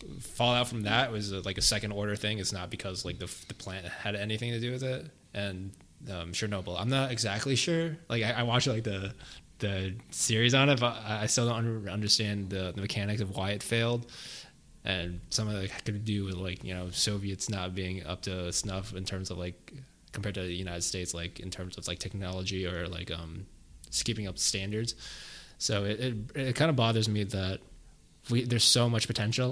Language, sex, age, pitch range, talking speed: English, male, 20-39, 95-125 Hz, 215 wpm